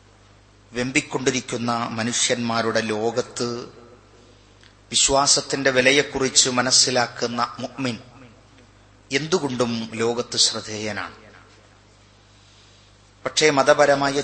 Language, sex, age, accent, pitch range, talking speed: Malayalam, male, 30-49, native, 105-130 Hz, 50 wpm